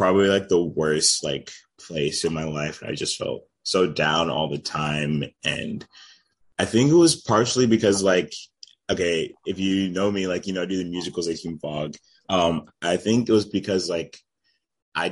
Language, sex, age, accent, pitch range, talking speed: English, male, 20-39, American, 80-95 Hz, 190 wpm